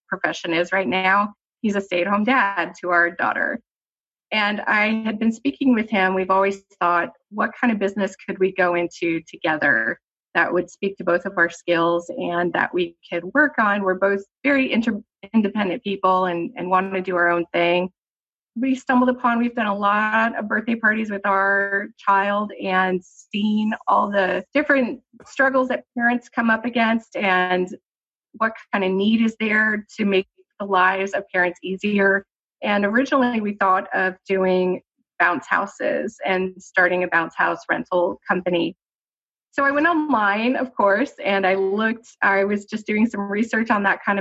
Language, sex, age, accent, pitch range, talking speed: English, female, 30-49, American, 185-225 Hz, 175 wpm